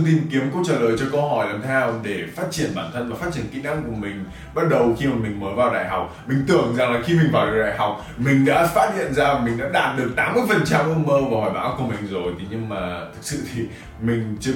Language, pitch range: Vietnamese, 110-155 Hz